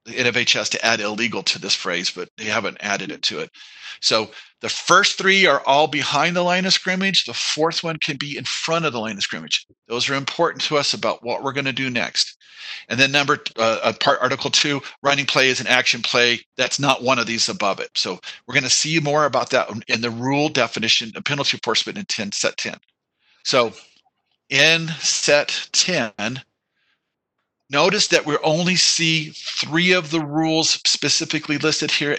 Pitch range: 125-155 Hz